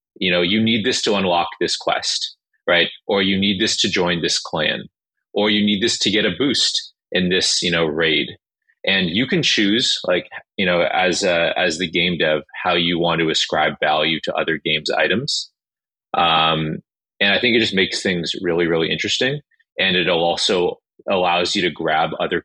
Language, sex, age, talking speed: English, male, 30-49, 200 wpm